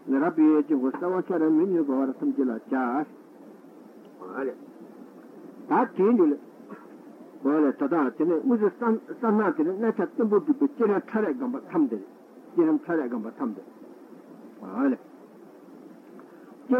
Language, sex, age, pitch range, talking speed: Italian, male, 60-79, 210-310 Hz, 80 wpm